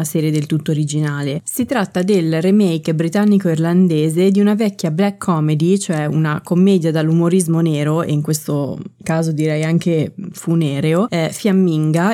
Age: 20-39